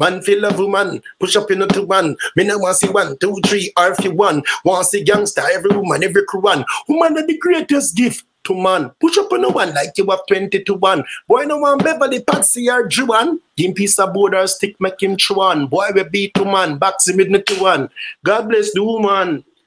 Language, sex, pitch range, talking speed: English, male, 180-245 Hz, 240 wpm